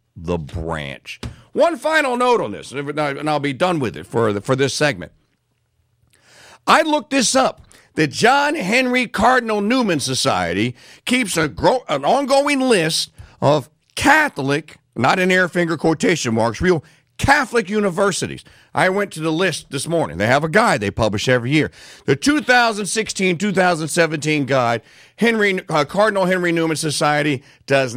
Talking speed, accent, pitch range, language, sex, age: 145 wpm, American, 125-200 Hz, English, male, 50-69